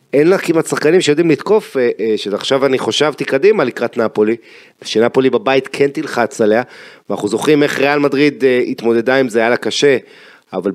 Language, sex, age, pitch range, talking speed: Hebrew, male, 30-49, 115-150 Hz, 160 wpm